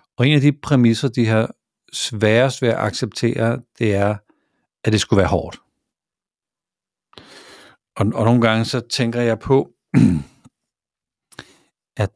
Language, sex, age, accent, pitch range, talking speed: Danish, male, 60-79, native, 105-125 Hz, 135 wpm